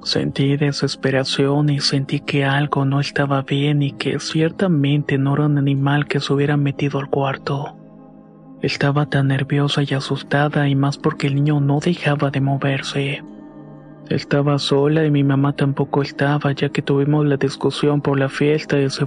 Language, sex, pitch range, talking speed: Spanish, male, 140-145 Hz, 165 wpm